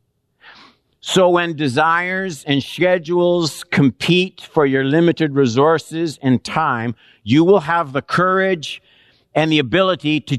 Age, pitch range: 50-69, 105-145 Hz